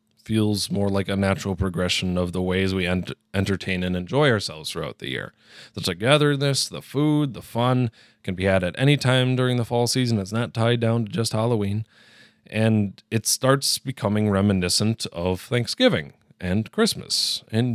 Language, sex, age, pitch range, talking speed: English, male, 30-49, 95-130 Hz, 170 wpm